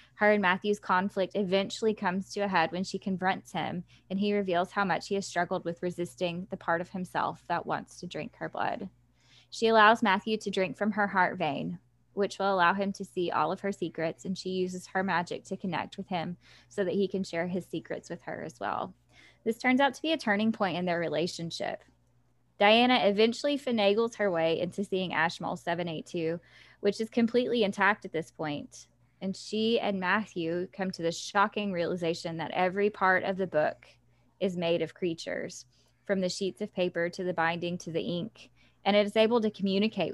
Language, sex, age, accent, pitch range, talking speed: English, female, 10-29, American, 165-205 Hz, 200 wpm